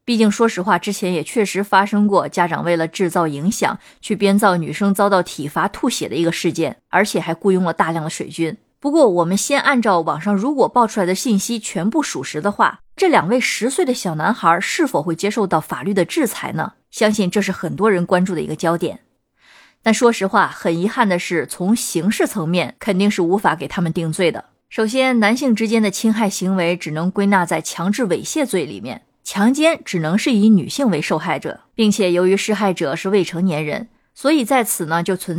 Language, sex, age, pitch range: Chinese, female, 20-39, 170-215 Hz